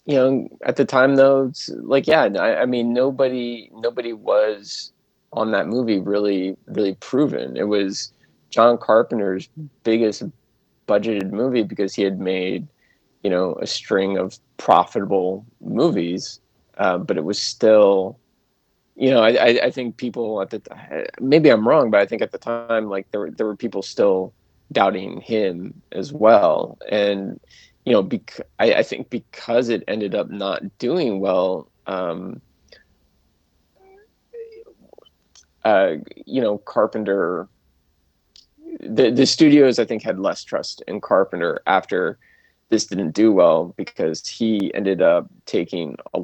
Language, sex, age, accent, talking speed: English, male, 20-39, American, 145 wpm